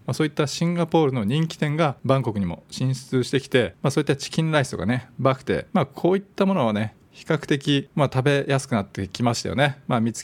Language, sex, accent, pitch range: Japanese, male, native, 115-145 Hz